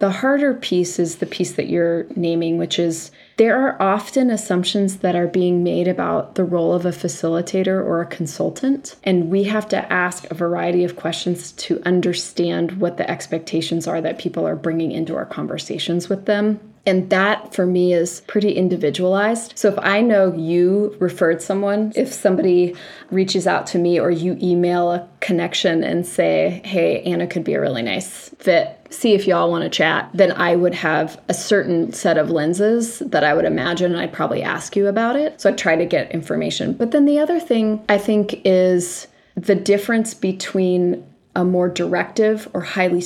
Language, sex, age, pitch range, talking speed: English, female, 20-39, 170-200 Hz, 190 wpm